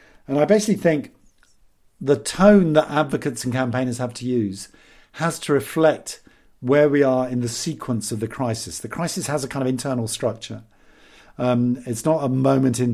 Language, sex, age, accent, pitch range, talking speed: English, male, 50-69, British, 115-145 Hz, 180 wpm